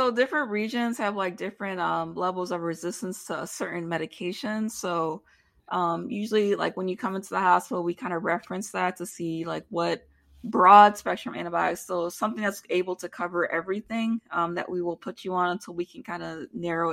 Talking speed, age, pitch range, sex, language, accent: 200 wpm, 20-39, 170-210 Hz, female, English, American